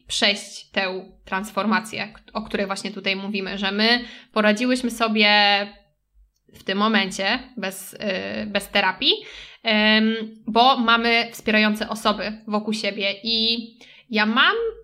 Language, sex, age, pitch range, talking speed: Polish, female, 20-39, 205-235 Hz, 110 wpm